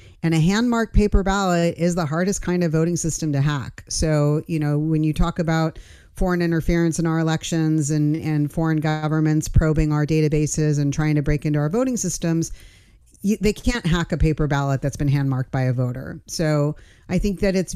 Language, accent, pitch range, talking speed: English, American, 150-185 Hz, 195 wpm